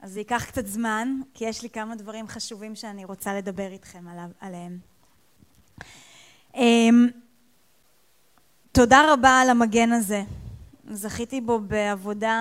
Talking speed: 115 wpm